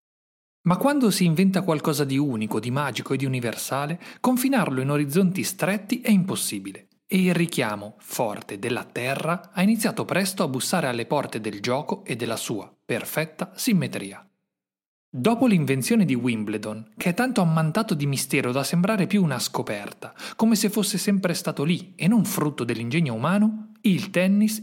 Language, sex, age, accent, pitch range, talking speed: Italian, male, 40-59, native, 135-205 Hz, 160 wpm